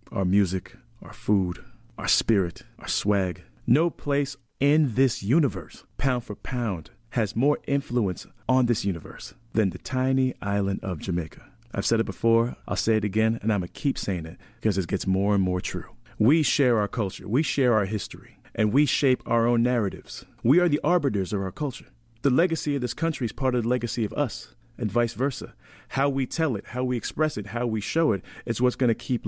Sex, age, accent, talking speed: male, 40-59, American, 210 wpm